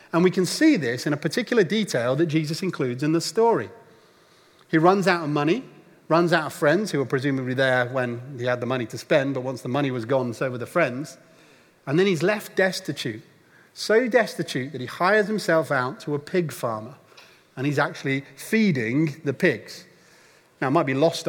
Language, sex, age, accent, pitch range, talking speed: English, male, 40-59, British, 135-175 Hz, 205 wpm